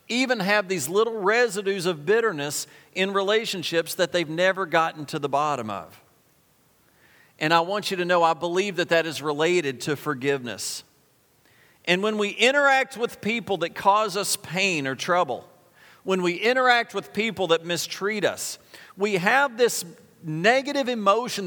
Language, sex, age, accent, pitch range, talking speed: English, male, 40-59, American, 145-200 Hz, 155 wpm